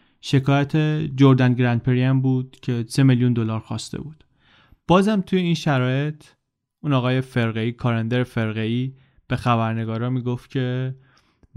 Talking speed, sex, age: 130 wpm, male, 20-39